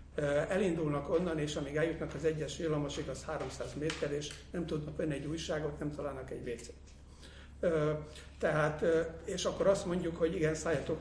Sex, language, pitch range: male, Hungarian, 145-165 Hz